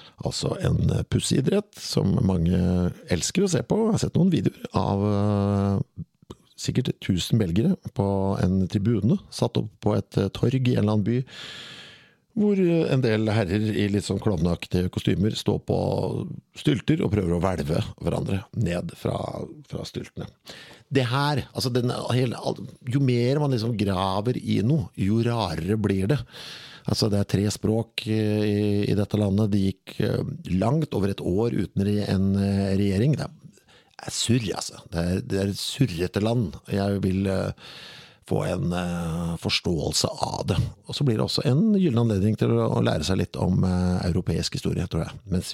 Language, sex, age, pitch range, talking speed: English, male, 50-69, 95-125 Hz, 155 wpm